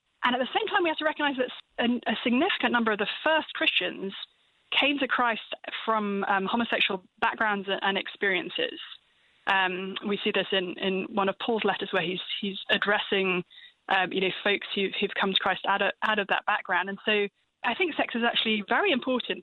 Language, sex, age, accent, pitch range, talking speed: English, female, 20-39, British, 195-240 Hz, 195 wpm